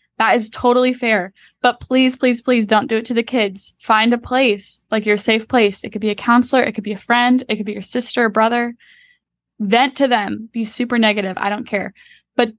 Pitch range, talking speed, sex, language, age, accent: 215-245 Hz, 230 wpm, female, English, 10-29, American